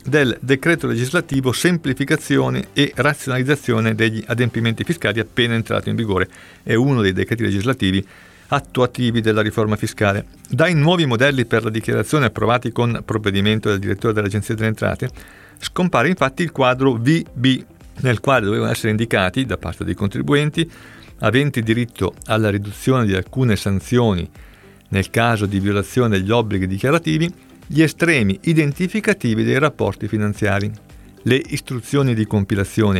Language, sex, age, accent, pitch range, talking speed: Italian, male, 50-69, native, 105-135 Hz, 135 wpm